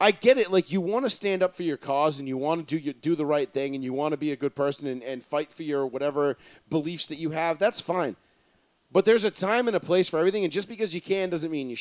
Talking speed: 295 wpm